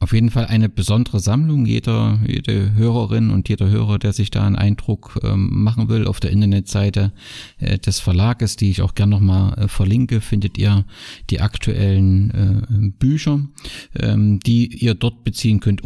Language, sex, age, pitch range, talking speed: German, male, 50-69, 100-120 Hz, 150 wpm